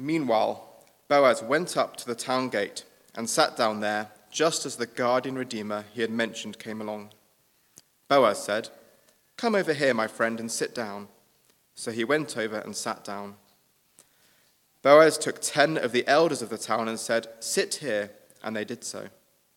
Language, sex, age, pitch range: English, male, 30-49, 110-140 Hz